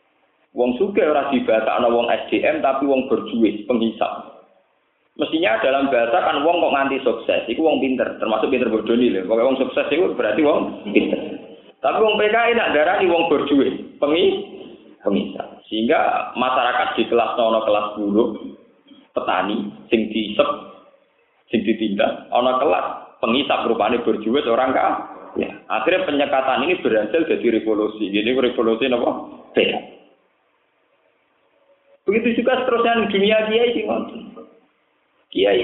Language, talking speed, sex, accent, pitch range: Indonesian, 130 wpm, male, native, 110-170 Hz